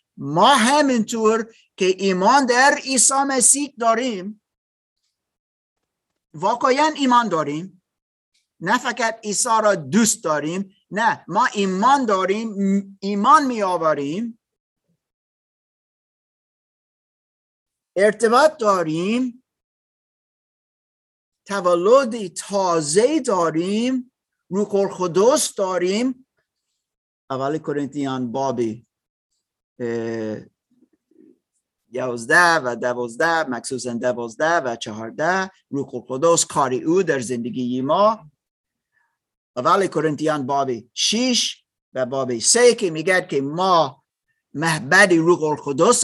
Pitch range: 150-240 Hz